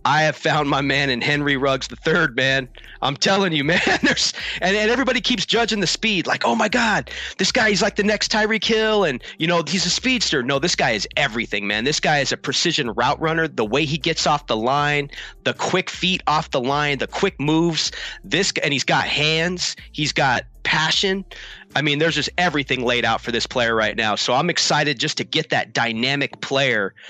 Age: 30-49